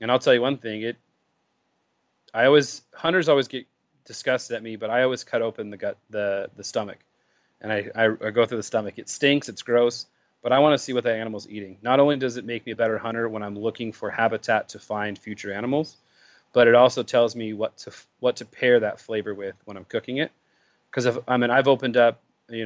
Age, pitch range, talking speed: 30-49, 110-125 Hz, 235 wpm